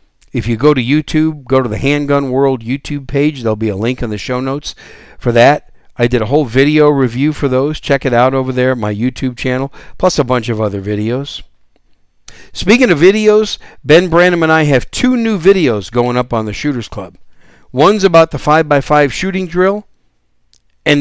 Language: English